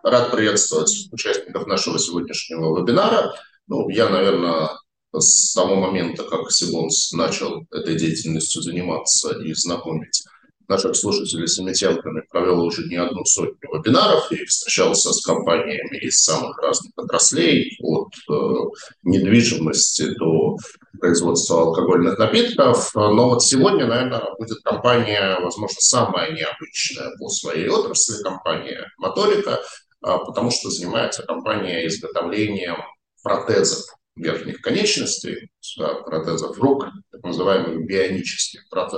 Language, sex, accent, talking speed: Russian, male, native, 110 wpm